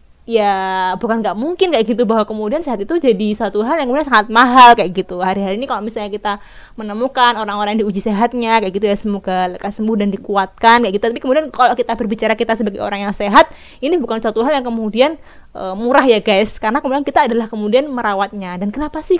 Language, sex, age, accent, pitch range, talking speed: Indonesian, female, 20-39, native, 205-255 Hz, 210 wpm